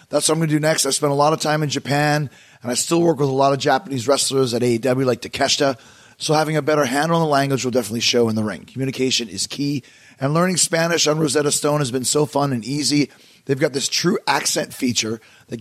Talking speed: 250 wpm